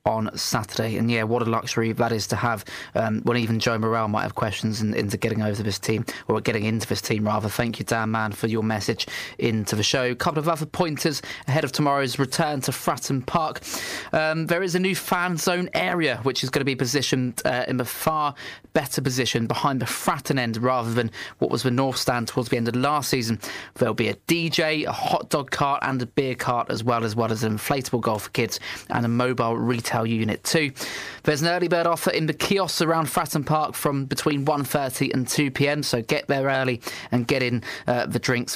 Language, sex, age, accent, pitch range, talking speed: English, male, 20-39, British, 115-145 Hz, 225 wpm